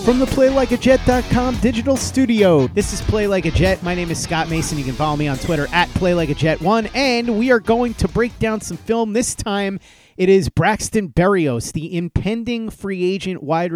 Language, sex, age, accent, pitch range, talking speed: English, male, 30-49, American, 145-200 Hz, 190 wpm